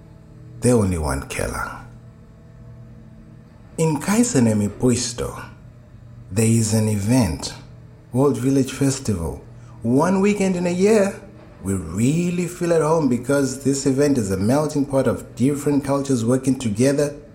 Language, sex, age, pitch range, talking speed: English, male, 60-79, 115-145 Hz, 120 wpm